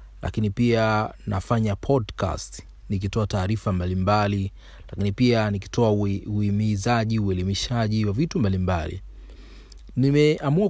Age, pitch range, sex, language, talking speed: 40-59, 80-115 Hz, male, Swahili, 90 wpm